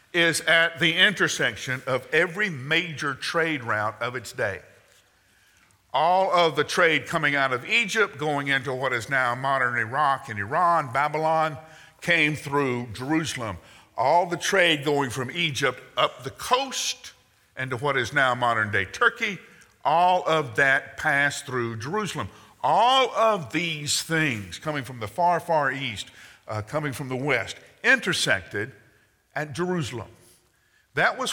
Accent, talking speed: American, 140 wpm